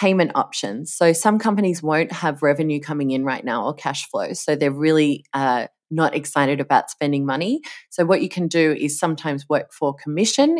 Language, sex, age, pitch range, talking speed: English, female, 20-39, 145-190 Hz, 195 wpm